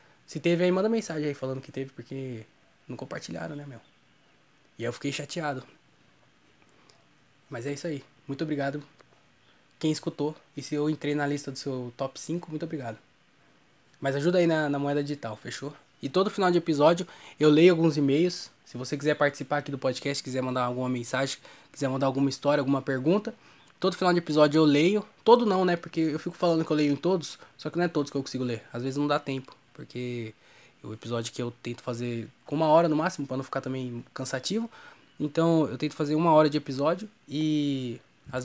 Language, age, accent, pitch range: Portuguese, 20-39, Brazilian, 130-155 Hz